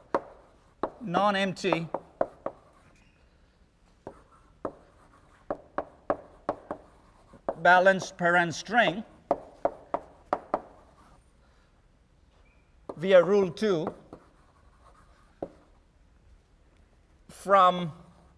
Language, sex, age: English, male, 50-69